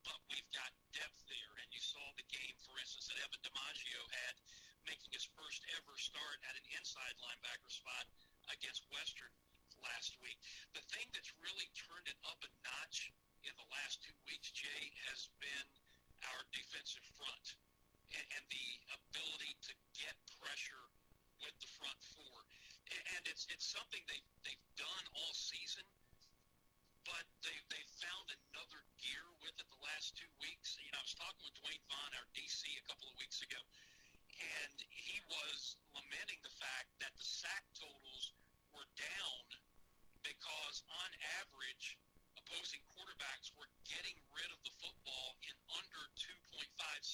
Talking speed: 155 wpm